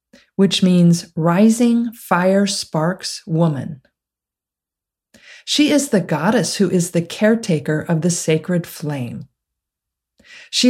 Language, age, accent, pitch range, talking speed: English, 50-69, American, 160-215 Hz, 105 wpm